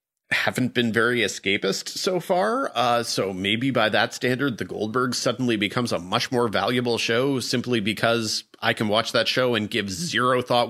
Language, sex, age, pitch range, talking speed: English, male, 30-49, 105-125 Hz, 180 wpm